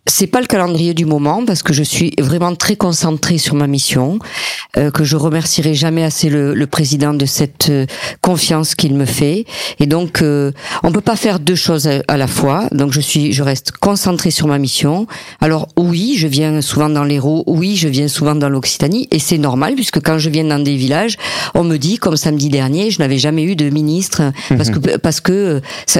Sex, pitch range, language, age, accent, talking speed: female, 145-180 Hz, French, 50-69, French, 215 wpm